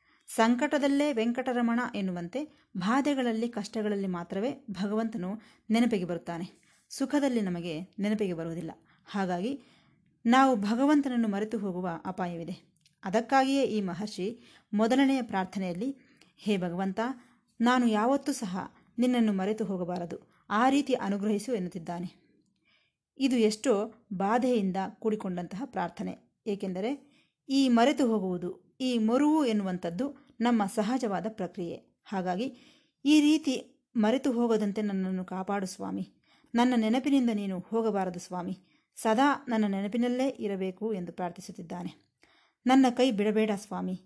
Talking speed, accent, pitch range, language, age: 100 wpm, native, 185-250 Hz, Kannada, 20-39